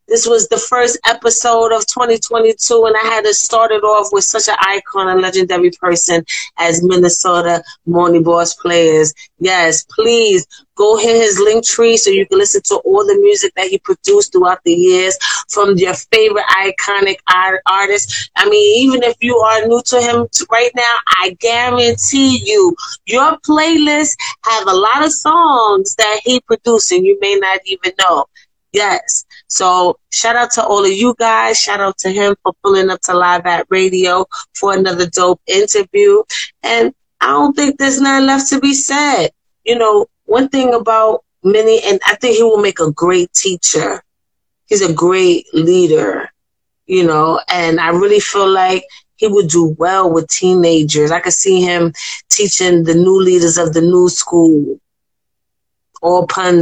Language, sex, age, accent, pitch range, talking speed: English, female, 30-49, American, 180-275 Hz, 170 wpm